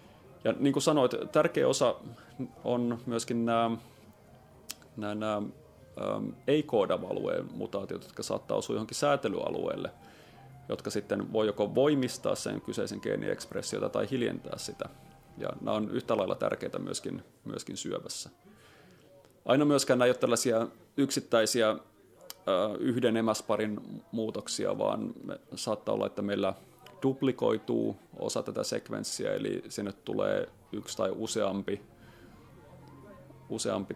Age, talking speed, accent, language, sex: 30-49, 115 wpm, native, Finnish, male